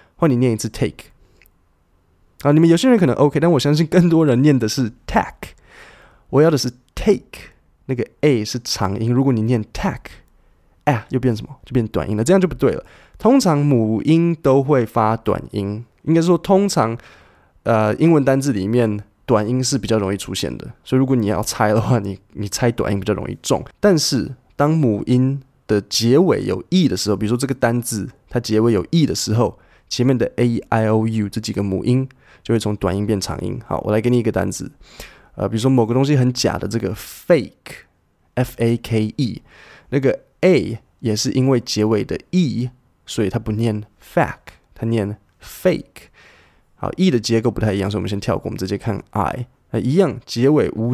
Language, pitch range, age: Chinese, 105-135 Hz, 20-39